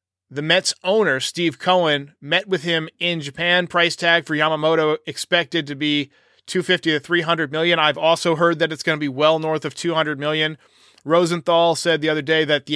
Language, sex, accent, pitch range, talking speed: English, male, American, 150-190 Hz, 195 wpm